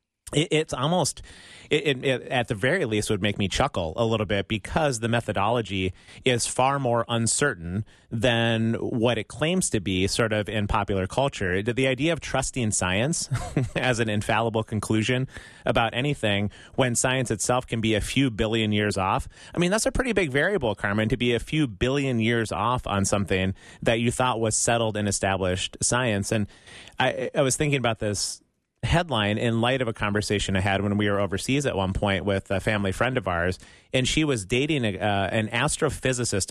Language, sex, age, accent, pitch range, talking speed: English, male, 30-49, American, 105-130 Hz, 185 wpm